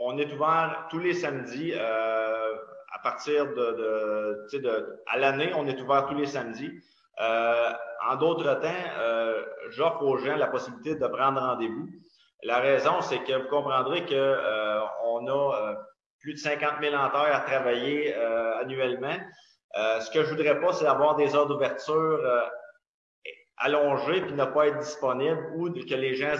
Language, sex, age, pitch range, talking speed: French, male, 30-49, 115-150 Hz, 170 wpm